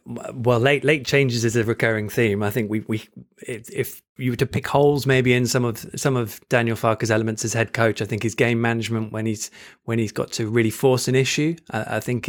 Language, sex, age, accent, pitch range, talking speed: English, male, 20-39, British, 110-130 Hz, 235 wpm